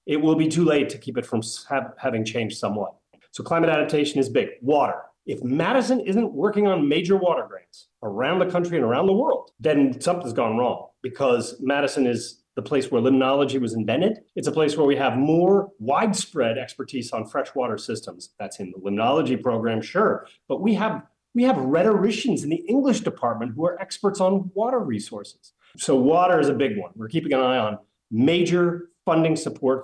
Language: English